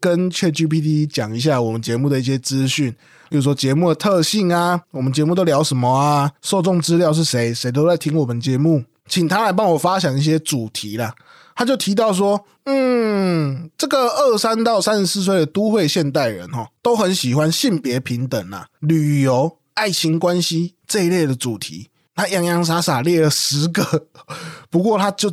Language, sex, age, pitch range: Chinese, male, 20-39, 135-180 Hz